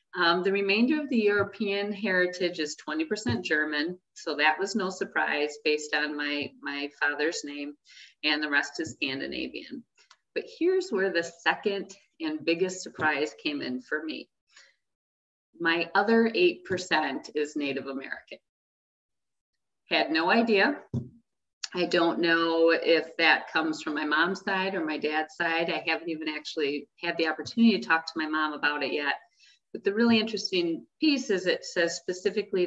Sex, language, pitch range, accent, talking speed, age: female, English, 150-195 Hz, American, 155 wpm, 30-49